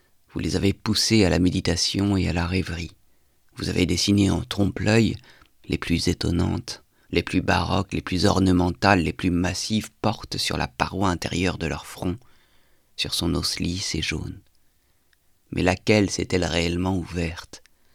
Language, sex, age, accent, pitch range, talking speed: French, male, 40-59, French, 85-95 Hz, 155 wpm